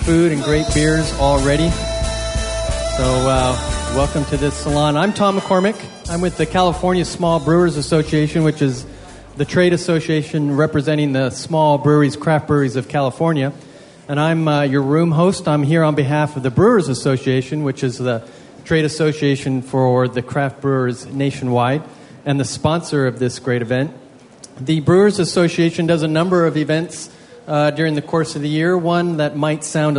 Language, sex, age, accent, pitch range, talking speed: English, male, 40-59, American, 130-160 Hz, 170 wpm